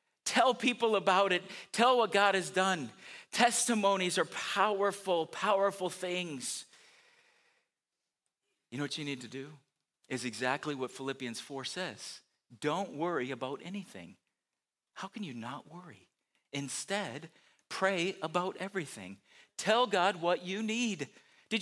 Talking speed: 130 wpm